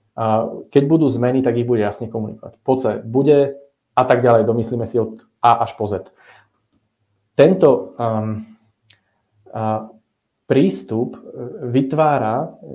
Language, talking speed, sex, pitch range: Czech, 120 wpm, male, 110-135 Hz